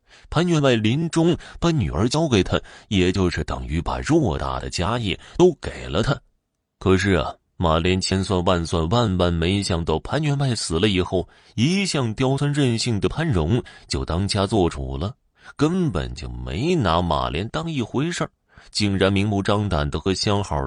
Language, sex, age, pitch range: Chinese, male, 20-39, 80-115 Hz